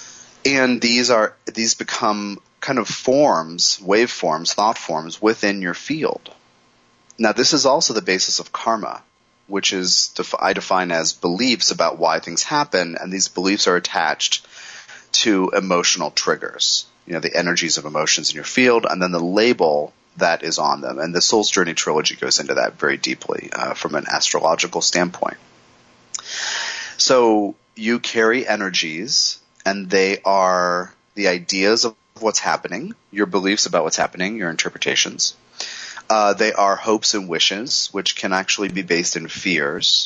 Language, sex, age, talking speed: English, male, 30-49, 155 wpm